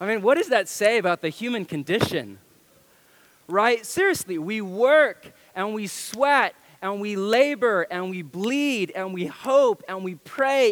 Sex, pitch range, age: male, 160-230 Hz, 30-49